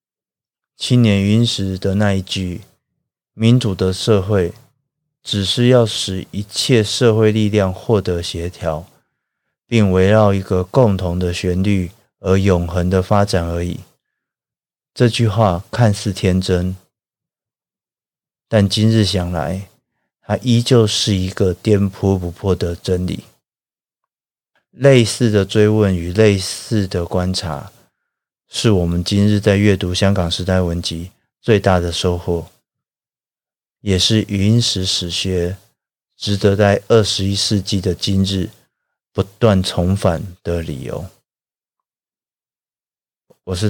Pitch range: 90-105 Hz